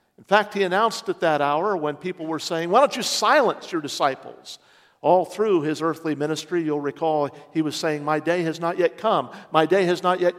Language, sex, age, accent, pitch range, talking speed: English, male, 50-69, American, 145-200 Hz, 220 wpm